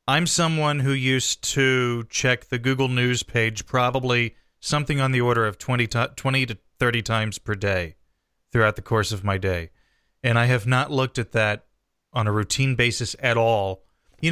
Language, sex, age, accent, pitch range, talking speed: English, male, 30-49, American, 115-140 Hz, 180 wpm